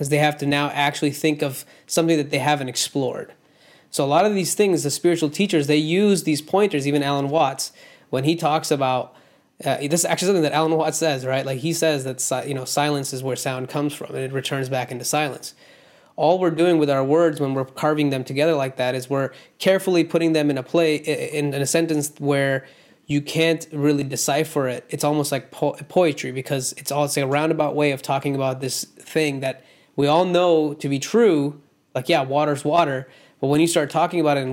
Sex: male